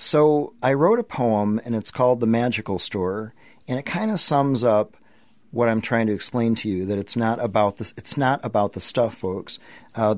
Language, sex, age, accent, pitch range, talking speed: English, male, 40-59, American, 105-125 Hz, 195 wpm